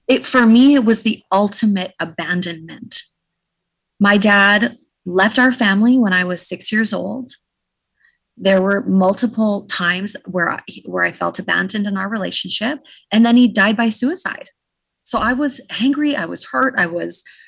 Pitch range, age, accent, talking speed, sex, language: 180-230 Hz, 20-39, American, 160 wpm, female, English